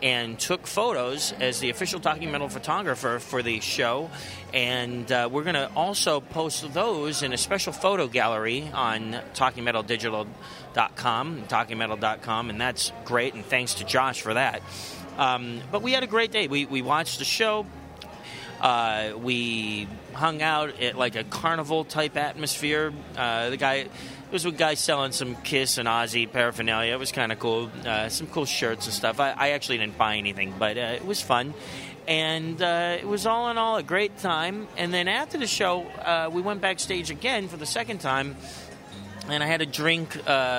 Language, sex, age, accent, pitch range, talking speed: English, male, 30-49, American, 120-170 Hz, 180 wpm